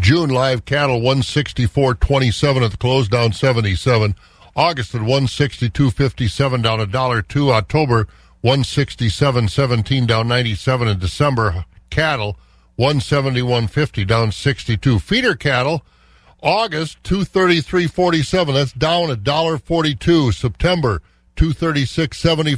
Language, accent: English, American